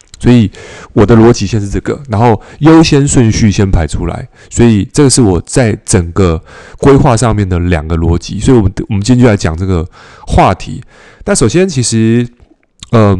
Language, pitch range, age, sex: Chinese, 95-125 Hz, 20-39, male